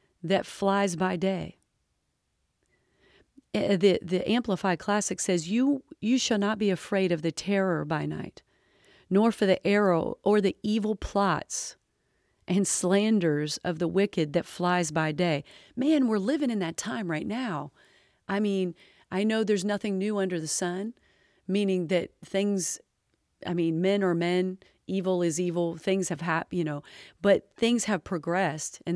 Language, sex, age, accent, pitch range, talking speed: English, female, 40-59, American, 170-205 Hz, 155 wpm